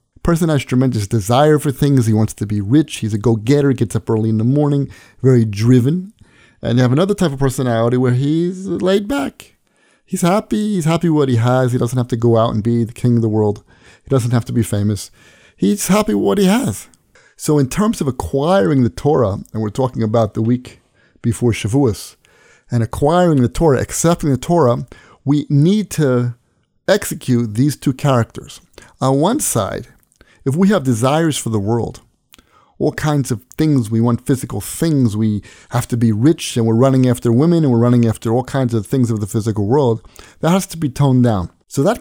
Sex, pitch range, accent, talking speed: male, 115-155 Hz, American, 205 wpm